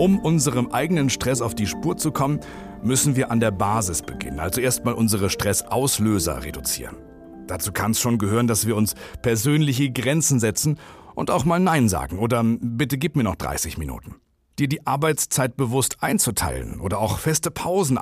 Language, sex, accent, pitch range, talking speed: German, male, German, 100-130 Hz, 175 wpm